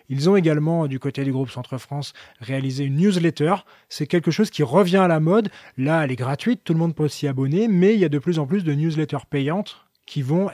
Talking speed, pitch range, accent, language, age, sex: 245 wpm, 145-180 Hz, French, French, 20-39, male